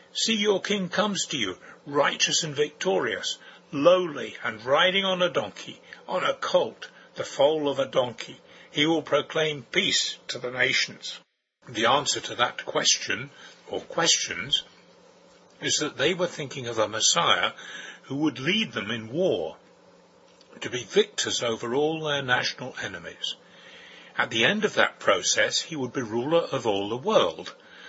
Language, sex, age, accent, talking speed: English, male, 60-79, British, 155 wpm